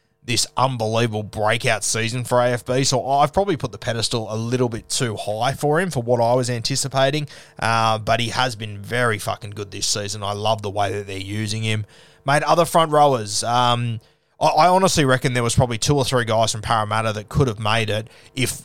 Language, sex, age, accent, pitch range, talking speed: English, male, 20-39, Australian, 110-130 Hz, 210 wpm